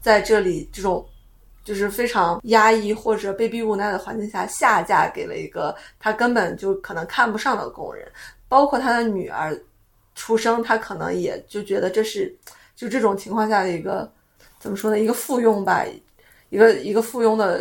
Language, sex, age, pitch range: Chinese, female, 20-39, 205-260 Hz